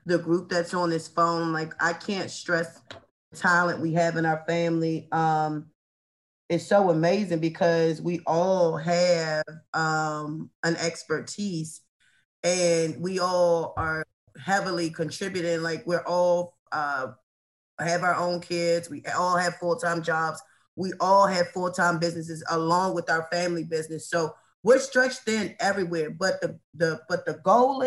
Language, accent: English, American